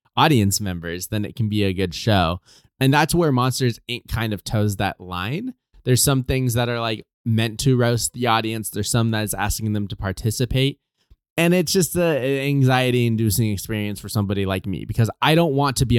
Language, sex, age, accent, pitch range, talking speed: English, male, 20-39, American, 105-130 Hz, 205 wpm